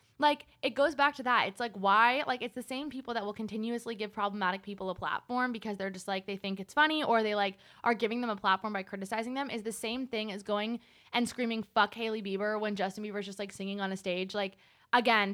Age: 20-39